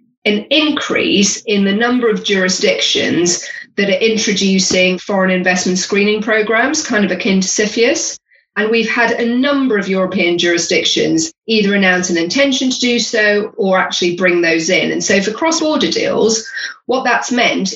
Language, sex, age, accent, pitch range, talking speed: English, female, 40-59, British, 185-235 Hz, 160 wpm